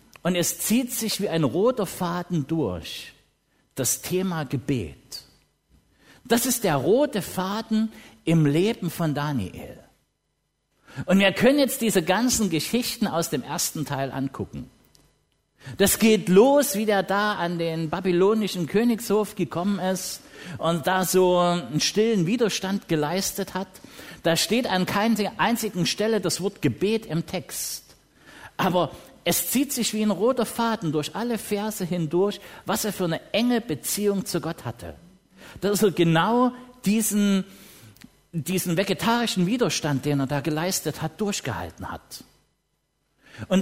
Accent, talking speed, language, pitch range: German, 140 wpm, English, 160-215 Hz